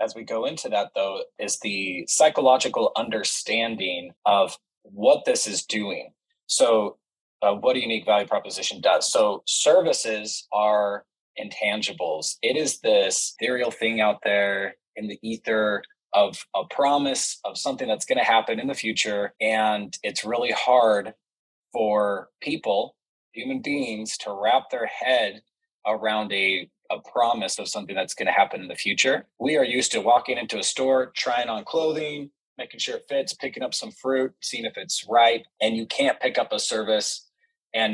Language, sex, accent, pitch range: English, male, American, 105-155 Hz